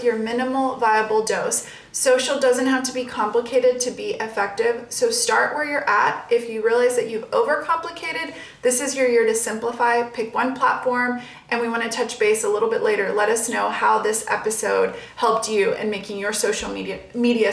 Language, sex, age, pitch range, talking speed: English, female, 30-49, 220-275 Hz, 195 wpm